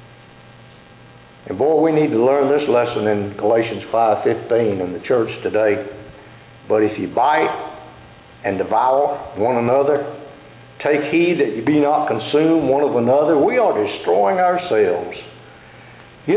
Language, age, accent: English, 60-79, American